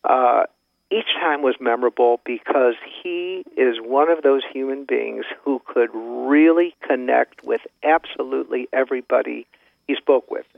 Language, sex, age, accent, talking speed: English, male, 50-69, American, 130 wpm